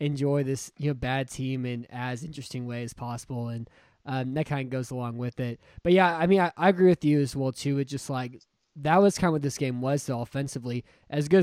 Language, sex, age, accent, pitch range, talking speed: English, male, 20-39, American, 130-150 Hz, 250 wpm